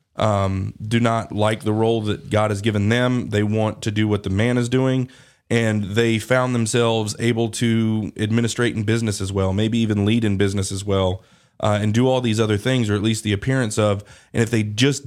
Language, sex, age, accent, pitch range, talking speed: English, male, 30-49, American, 105-120 Hz, 220 wpm